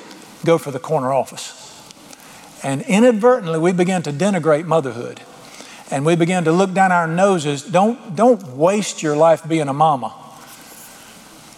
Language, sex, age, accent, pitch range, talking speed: English, male, 50-69, American, 150-190 Hz, 150 wpm